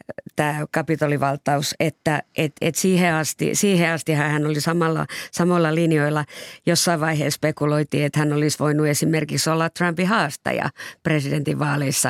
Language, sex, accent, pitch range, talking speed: Finnish, female, native, 145-160 Hz, 135 wpm